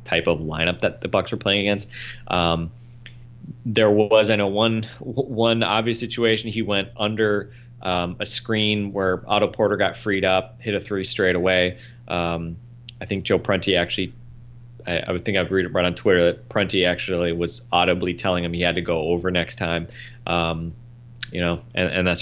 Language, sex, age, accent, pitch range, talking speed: English, male, 20-39, American, 85-115 Hz, 190 wpm